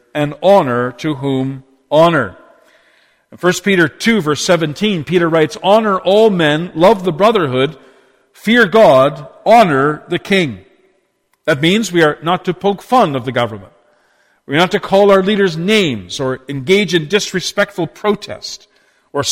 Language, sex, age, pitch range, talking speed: English, male, 50-69, 145-200 Hz, 150 wpm